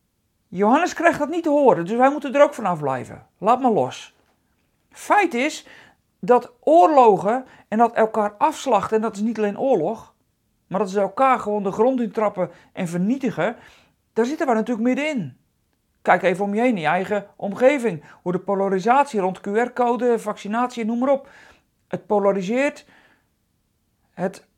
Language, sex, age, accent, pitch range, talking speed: Dutch, male, 40-59, Dutch, 210-275 Hz, 160 wpm